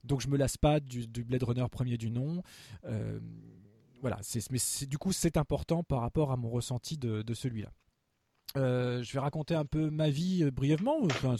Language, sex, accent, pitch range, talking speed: French, male, French, 120-160 Hz, 210 wpm